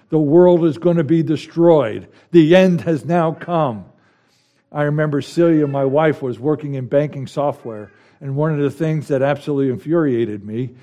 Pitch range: 125-160 Hz